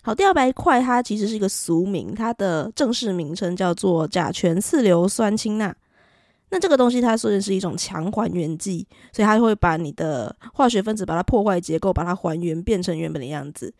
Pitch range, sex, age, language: 175-225 Hz, female, 20-39, Chinese